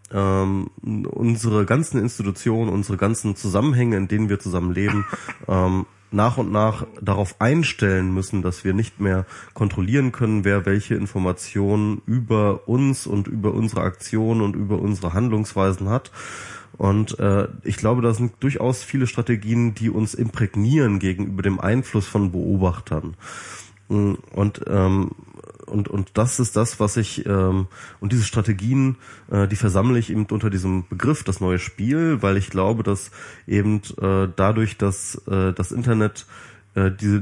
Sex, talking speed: male, 150 wpm